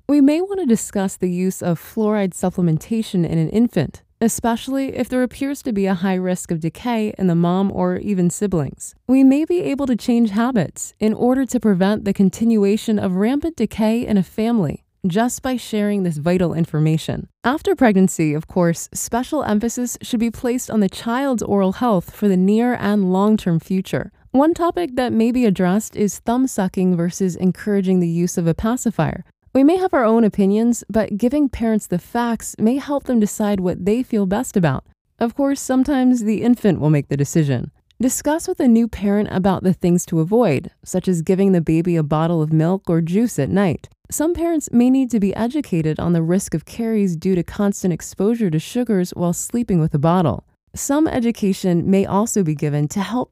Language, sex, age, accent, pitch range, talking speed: English, female, 20-39, American, 180-235 Hz, 195 wpm